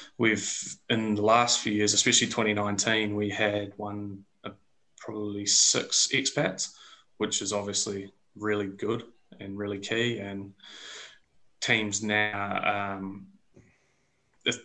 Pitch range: 100-115 Hz